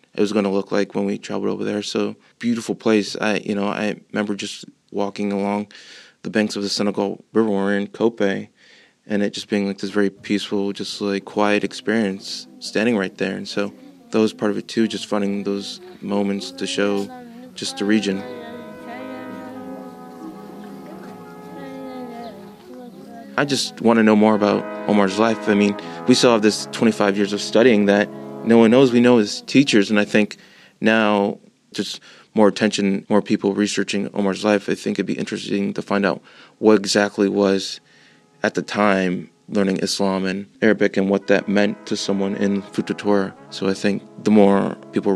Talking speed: 180 wpm